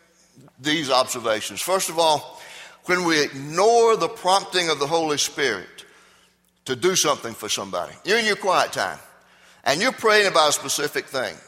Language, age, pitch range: English, 60-79, 135-185 Hz